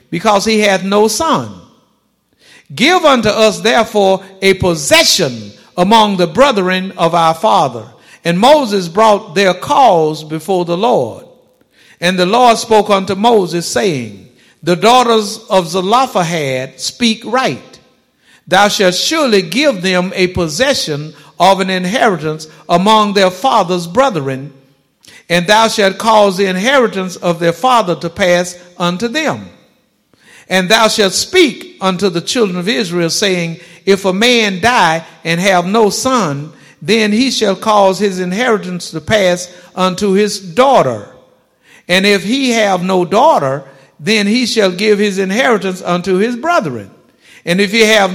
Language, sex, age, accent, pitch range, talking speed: English, male, 50-69, American, 175-220 Hz, 140 wpm